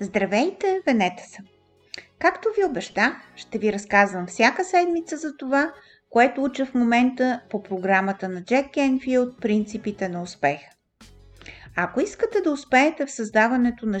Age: 50-69